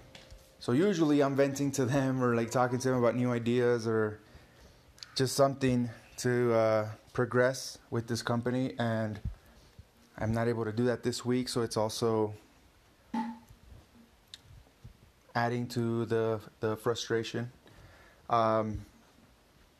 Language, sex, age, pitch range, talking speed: English, male, 20-39, 110-130 Hz, 125 wpm